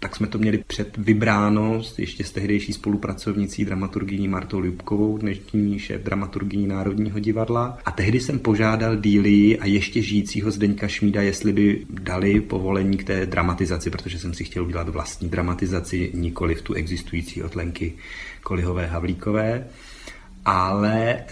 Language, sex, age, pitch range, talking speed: Czech, male, 30-49, 90-105 Hz, 140 wpm